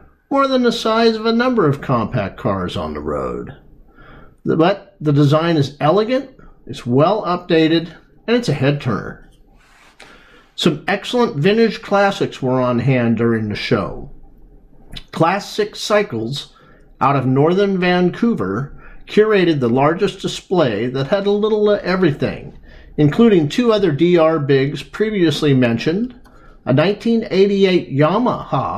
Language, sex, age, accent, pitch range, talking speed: English, male, 50-69, American, 135-210 Hz, 125 wpm